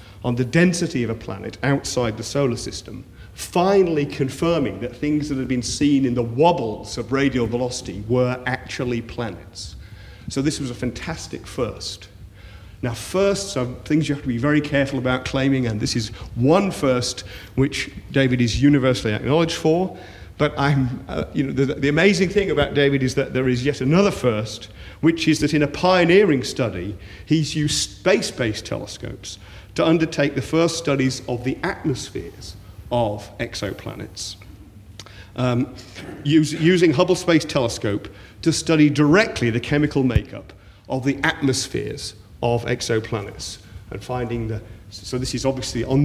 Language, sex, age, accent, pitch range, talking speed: English, male, 50-69, British, 105-145 Hz, 155 wpm